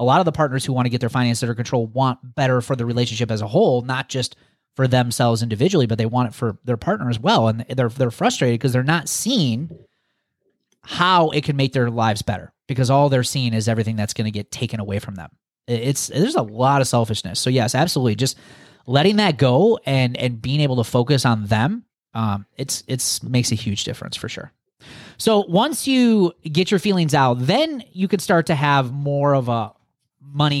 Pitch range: 120-155 Hz